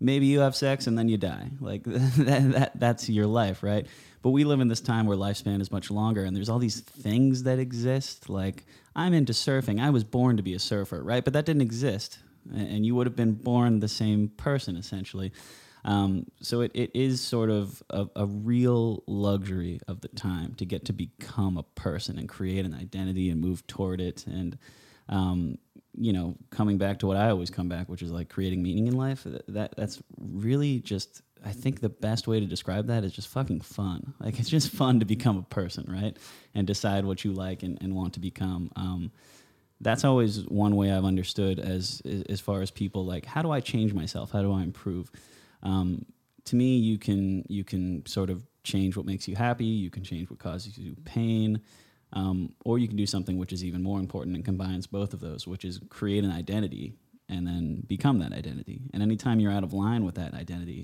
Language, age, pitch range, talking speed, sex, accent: English, 20-39, 95-120 Hz, 215 wpm, male, American